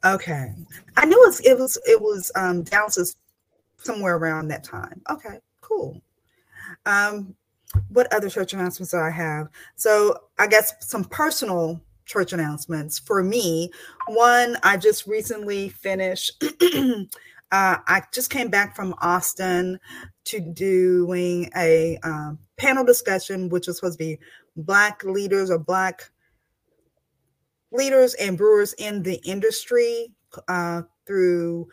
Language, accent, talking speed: English, American, 130 wpm